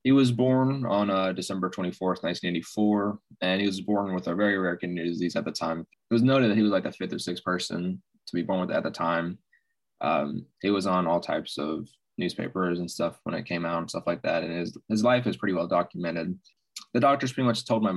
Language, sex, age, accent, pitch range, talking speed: English, male, 20-39, American, 85-105 Hz, 245 wpm